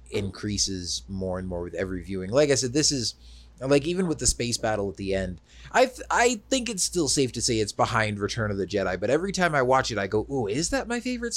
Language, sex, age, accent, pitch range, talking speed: English, male, 30-49, American, 90-125 Hz, 255 wpm